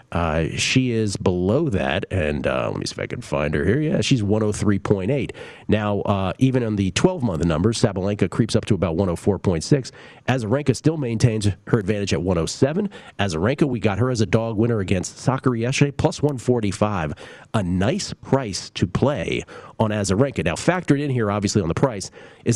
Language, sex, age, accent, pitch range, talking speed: English, male, 40-59, American, 95-125 Hz, 175 wpm